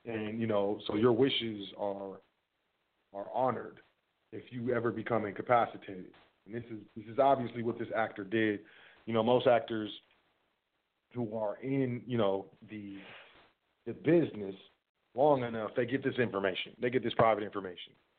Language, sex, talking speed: English, male, 155 wpm